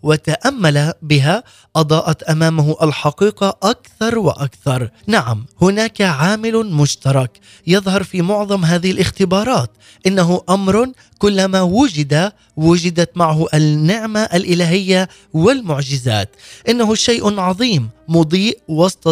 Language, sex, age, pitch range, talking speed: Arabic, male, 20-39, 155-195 Hz, 95 wpm